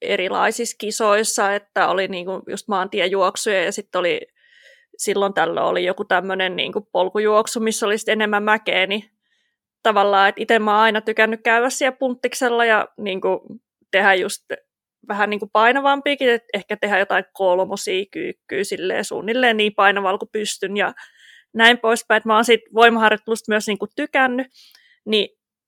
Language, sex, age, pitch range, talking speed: Finnish, female, 20-39, 200-230 Hz, 135 wpm